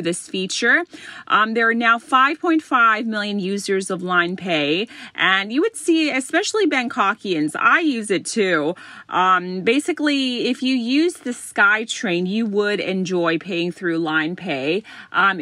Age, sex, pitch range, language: 30-49, female, 175-240 Hz, Thai